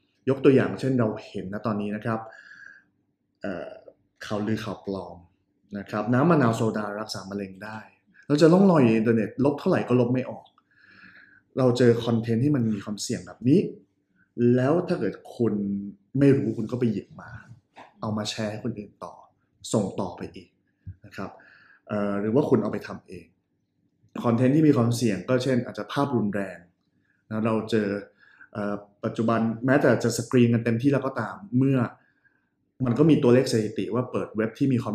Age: 20-39